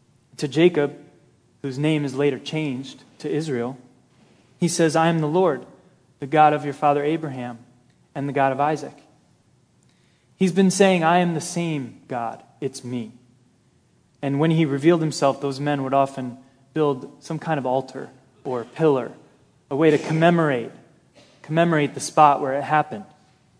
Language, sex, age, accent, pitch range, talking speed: English, male, 20-39, American, 130-155 Hz, 160 wpm